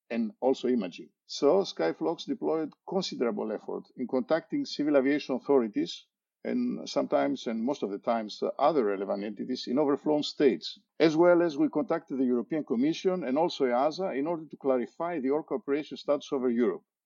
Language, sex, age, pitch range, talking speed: English, male, 50-69, 115-155 Hz, 170 wpm